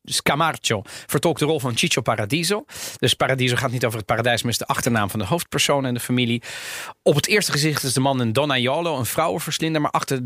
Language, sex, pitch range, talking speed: Dutch, male, 125-160 Hz, 240 wpm